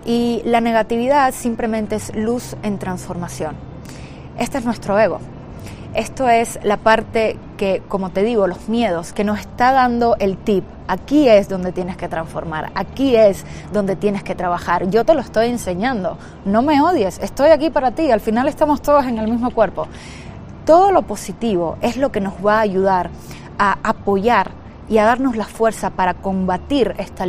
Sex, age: female, 20-39